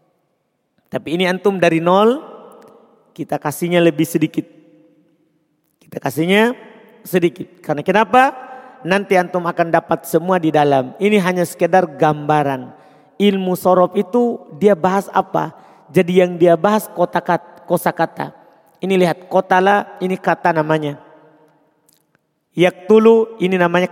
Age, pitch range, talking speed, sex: 40-59, 175-245 Hz, 120 wpm, male